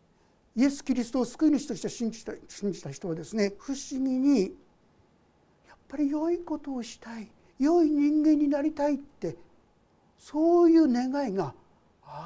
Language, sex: Japanese, male